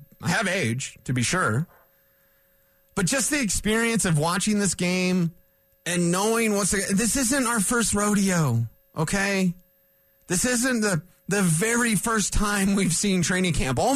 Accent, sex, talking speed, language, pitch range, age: American, male, 155 wpm, English, 140-205 Hz, 30-49